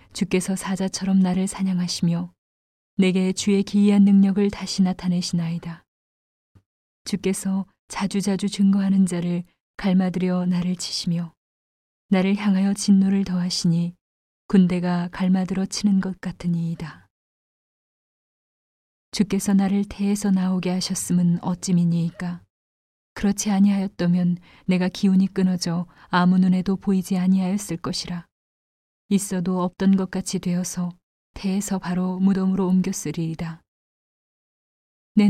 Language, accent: Korean, native